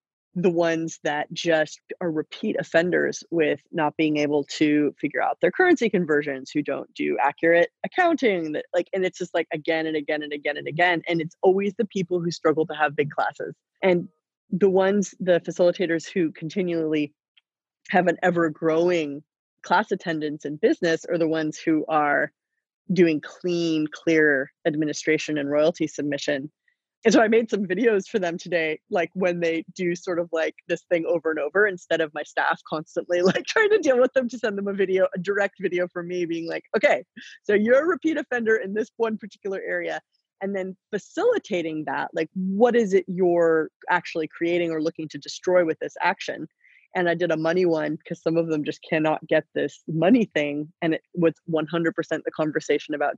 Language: English